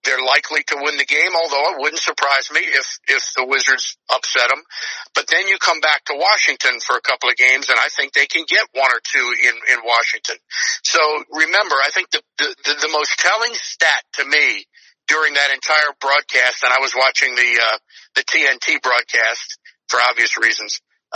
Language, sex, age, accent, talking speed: English, male, 50-69, American, 200 wpm